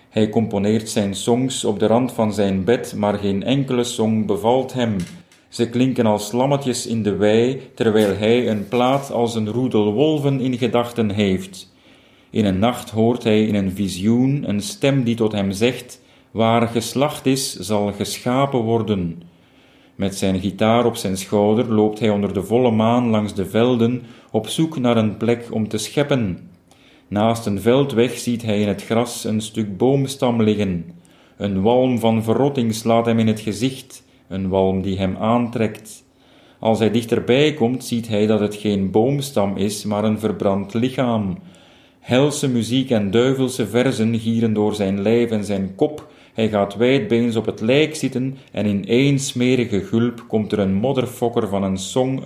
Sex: male